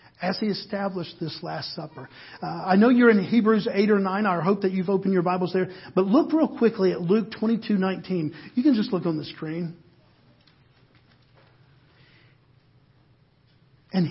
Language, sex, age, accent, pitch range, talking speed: English, male, 50-69, American, 155-210 Hz, 160 wpm